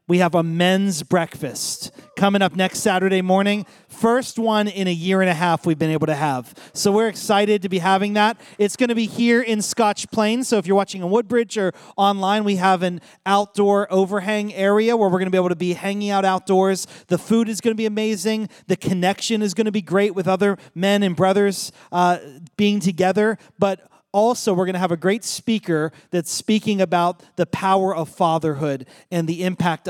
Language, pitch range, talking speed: English, 165-200 Hz, 210 wpm